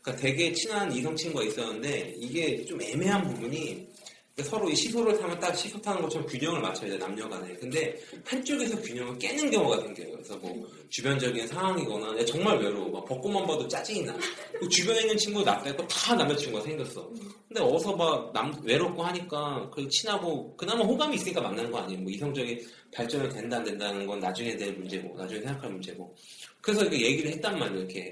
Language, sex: Korean, male